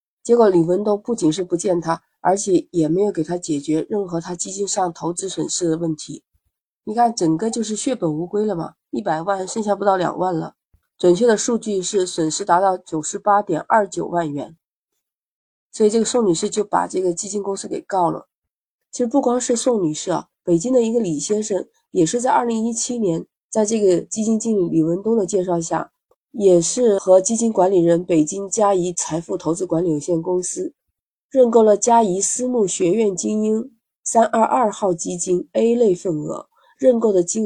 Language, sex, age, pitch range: Chinese, female, 30-49, 175-230 Hz